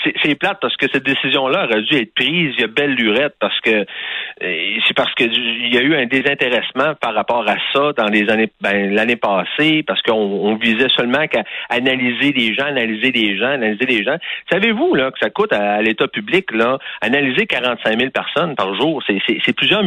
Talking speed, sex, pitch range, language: 215 wpm, male, 120-195 Hz, French